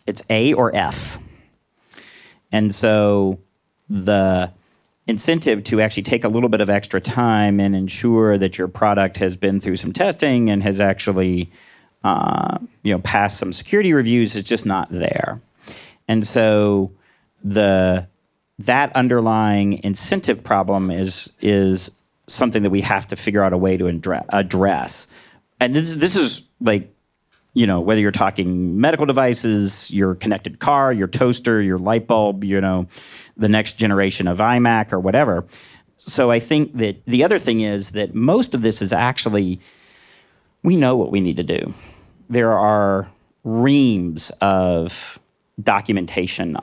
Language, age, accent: English, 40-59, American